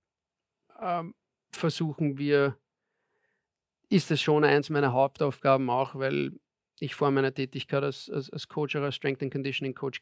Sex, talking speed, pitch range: male, 145 wpm, 135-145 Hz